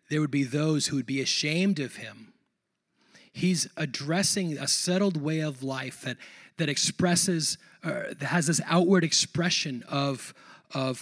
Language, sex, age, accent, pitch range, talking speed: English, male, 30-49, American, 145-185 Hz, 150 wpm